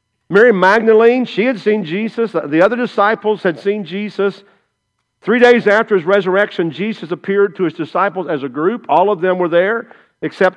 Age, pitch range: 50-69, 160-215 Hz